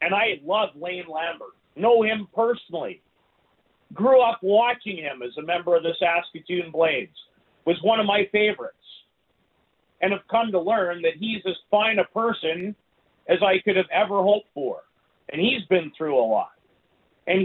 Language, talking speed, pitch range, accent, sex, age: English, 170 wpm, 165-215 Hz, American, male, 50-69